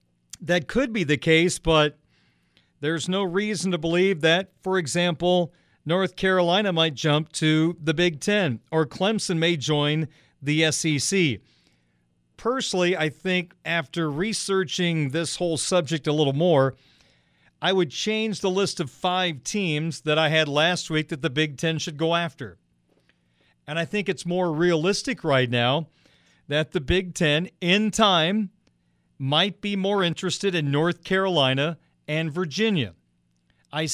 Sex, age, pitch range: male, 40-59, 145-180 Hz